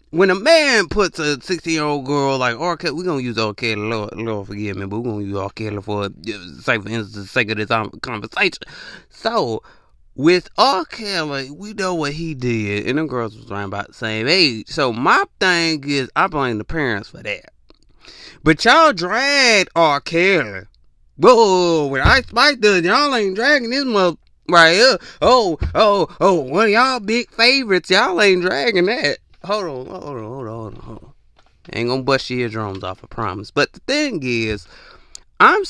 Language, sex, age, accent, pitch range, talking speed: English, male, 20-39, American, 120-195 Hz, 190 wpm